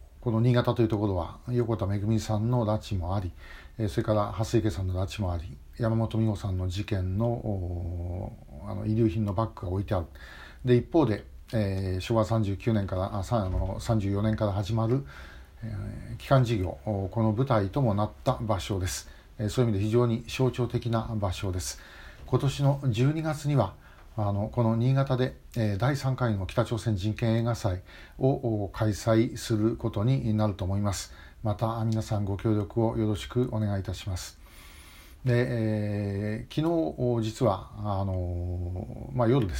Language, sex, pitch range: Japanese, male, 100-120 Hz